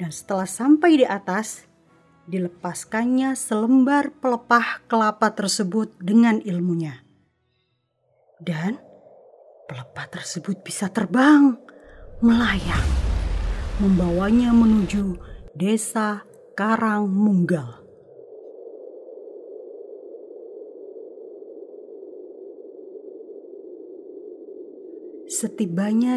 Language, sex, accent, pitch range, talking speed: Indonesian, female, native, 185-305 Hz, 55 wpm